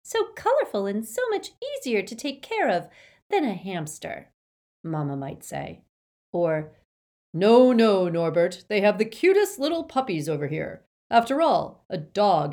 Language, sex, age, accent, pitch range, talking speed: English, female, 40-59, American, 155-225 Hz, 155 wpm